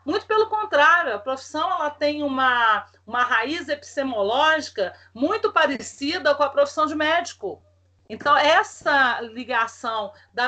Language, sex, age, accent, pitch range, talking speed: Portuguese, female, 40-59, Brazilian, 230-295 Hz, 125 wpm